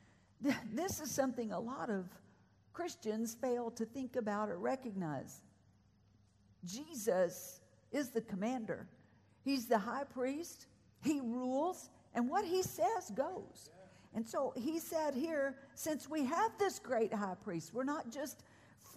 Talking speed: 135 wpm